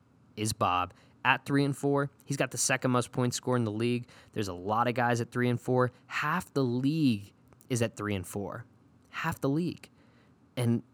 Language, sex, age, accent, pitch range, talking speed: English, male, 20-39, American, 100-130 Hz, 205 wpm